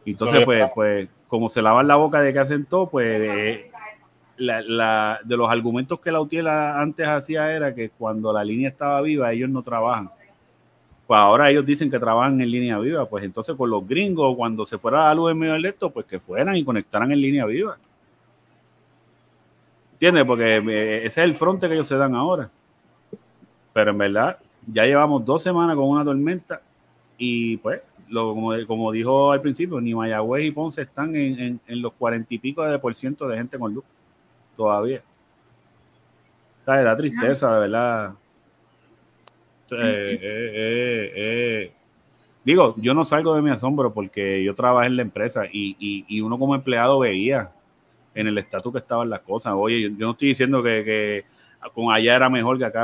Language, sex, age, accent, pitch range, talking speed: Spanish, male, 30-49, Venezuelan, 110-145 Hz, 185 wpm